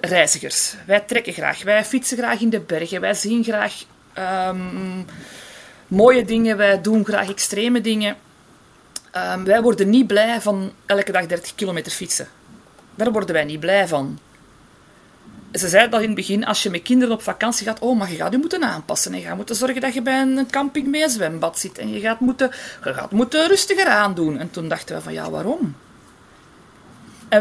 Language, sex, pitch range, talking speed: Dutch, female, 185-250 Hz, 195 wpm